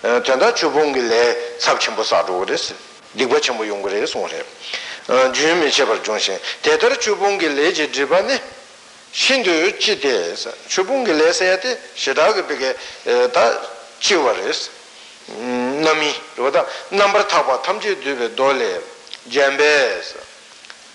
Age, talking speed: 60-79, 65 wpm